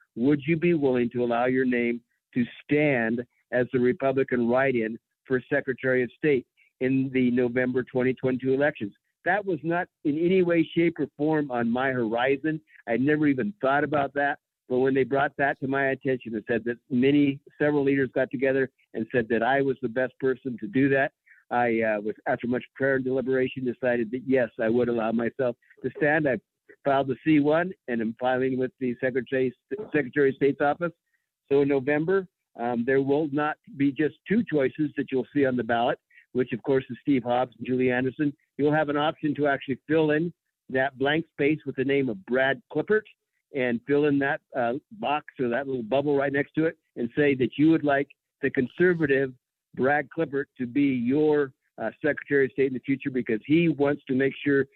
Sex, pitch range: male, 125-145 Hz